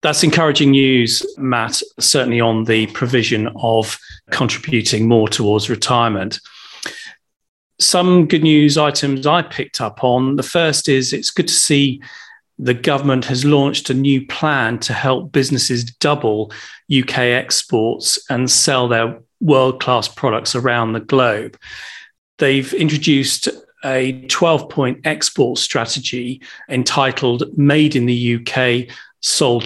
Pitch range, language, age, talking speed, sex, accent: 120-150 Hz, English, 40-59, 125 wpm, male, British